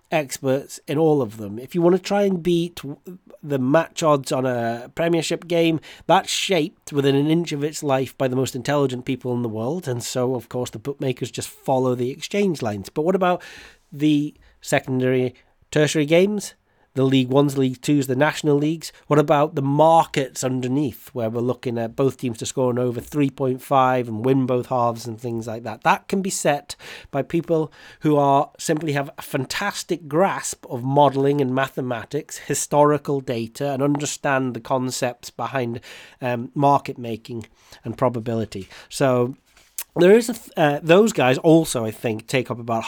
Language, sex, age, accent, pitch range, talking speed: English, male, 30-49, British, 125-150 Hz, 180 wpm